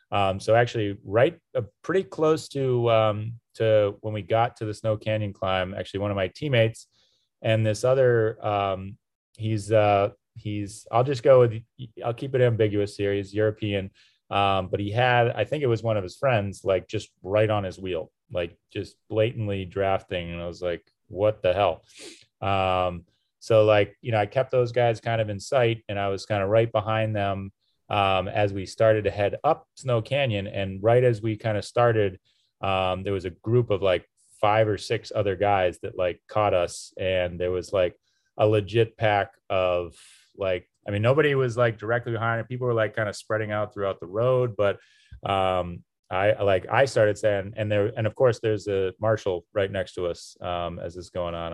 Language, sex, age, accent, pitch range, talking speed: English, male, 30-49, American, 100-115 Hz, 205 wpm